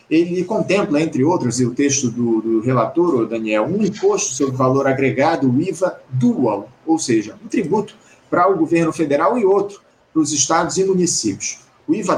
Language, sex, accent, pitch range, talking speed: Portuguese, male, Brazilian, 140-190 Hz, 175 wpm